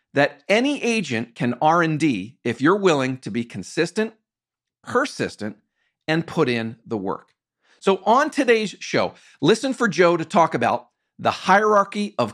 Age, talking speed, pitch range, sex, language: 50-69, 145 wpm, 125-195 Hz, male, English